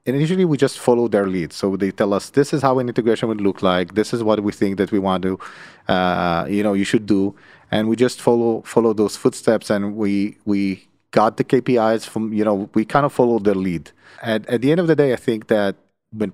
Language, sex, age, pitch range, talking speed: Hebrew, male, 30-49, 100-120 Hz, 255 wpm